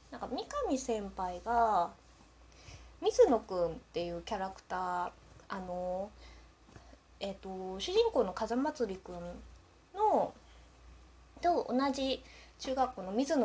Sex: female